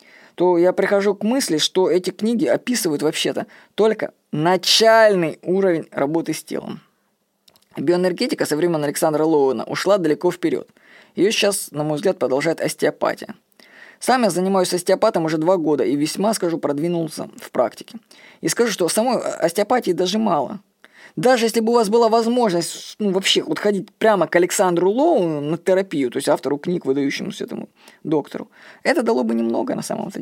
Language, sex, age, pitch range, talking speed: Russian, female, 20-39, 160-215 Hz, 160 wpm